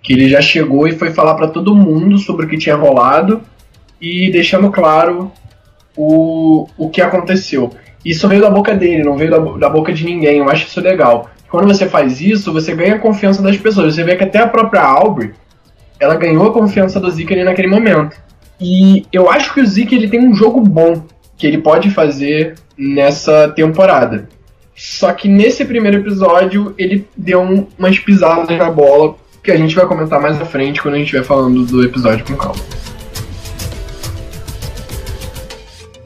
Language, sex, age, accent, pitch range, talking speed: Portuguese, male, 10-29, Brazilian, 125-190 Hz, 180 wpm